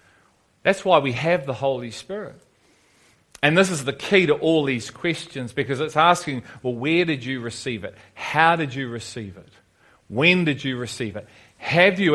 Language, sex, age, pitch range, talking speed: English, male, 40-59, 125-160 Hz, 185 wpm